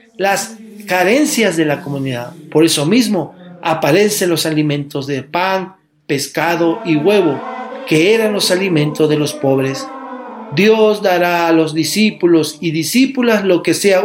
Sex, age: male, 40-59